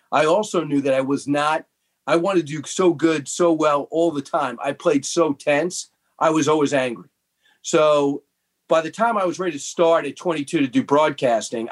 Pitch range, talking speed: 140-175 Hz, 210 wpm